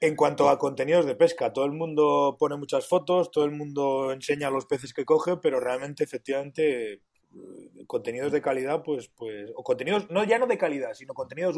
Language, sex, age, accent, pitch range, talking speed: Spanish, male, 30-49, Spanish, 135-180 Hz, 195 wpm